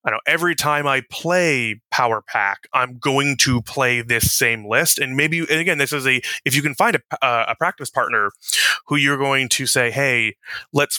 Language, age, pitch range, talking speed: English, 20-39, 120-145 Hz, 200 wpm